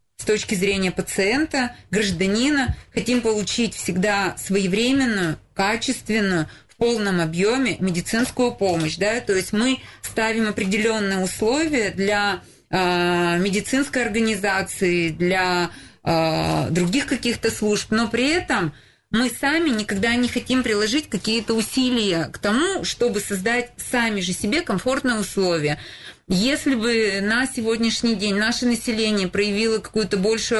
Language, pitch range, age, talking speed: Russian, 190-230 Hz, 30-49, 120 wpm